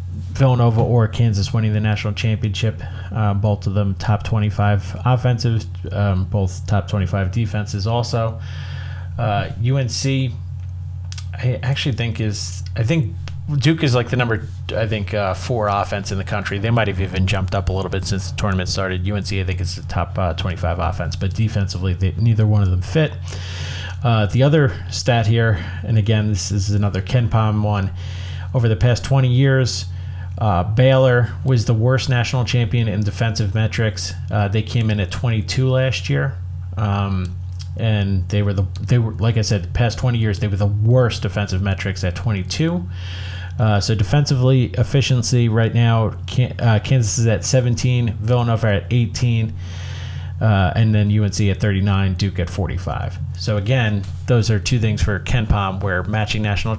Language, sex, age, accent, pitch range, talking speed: English, male, 30-49, American, 95-115 Hz, 170 wpm